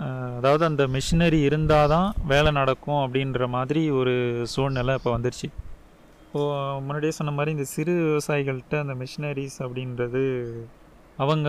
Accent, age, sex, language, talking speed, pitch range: native, 30-49, male, Tamil, 125 wpm, 125-150 Hz